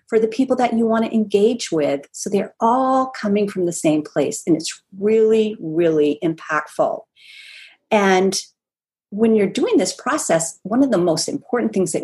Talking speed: 175 wpm